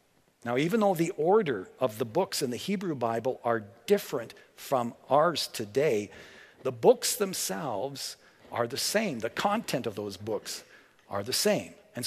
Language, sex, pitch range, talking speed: English, male, 130-190 Hz, 160 wpm